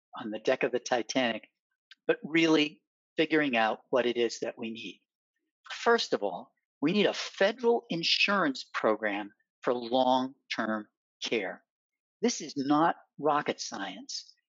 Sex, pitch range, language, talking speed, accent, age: male, 125-205 Hz, English, 135 wpm, American, 50-69